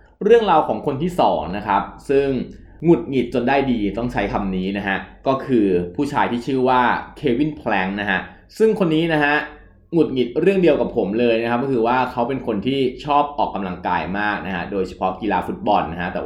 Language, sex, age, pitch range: Thai, male, 20-39, 100-145 Hz